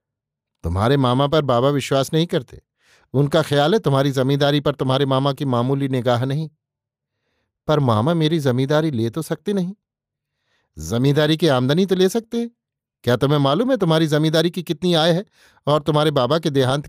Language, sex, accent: Hindi, male, native